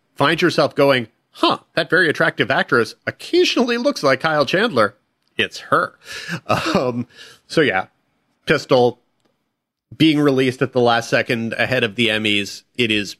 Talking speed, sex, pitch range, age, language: 140 wpm, male, 105-140 Hz, 40-59, English